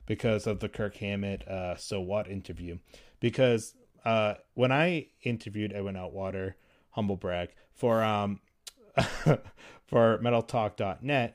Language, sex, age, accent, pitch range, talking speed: English, male, 30-49, American, 100-125 Hz, 115 wpm